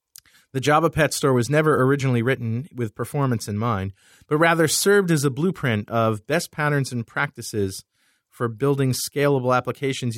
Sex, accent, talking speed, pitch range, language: male, American, 160 wpm, 110-145 Hz, English